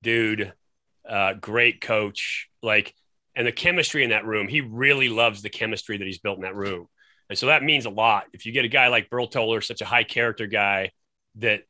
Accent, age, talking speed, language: American, 30-49, 215 wpm, English